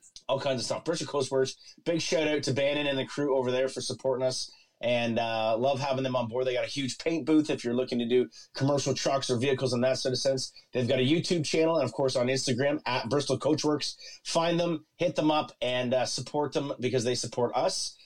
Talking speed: 240 wpm